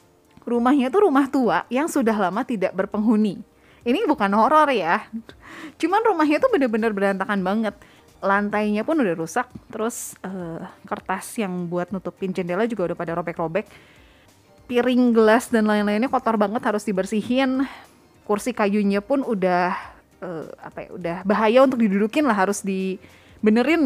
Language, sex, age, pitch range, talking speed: Indonesian, female, 20-39, 195-255 Hz, 140 wpm